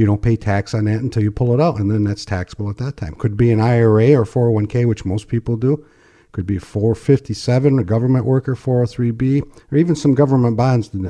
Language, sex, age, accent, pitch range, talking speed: English, male, 50-69, American, 105-130 Hz, 215 wpm